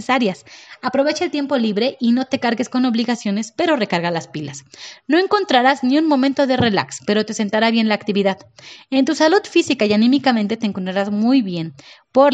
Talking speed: 190 wpm